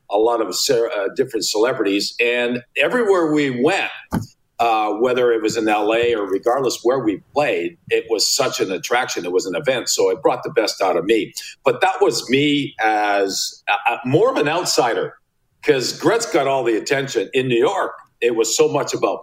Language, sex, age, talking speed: English, male, 50-69, 185 wpm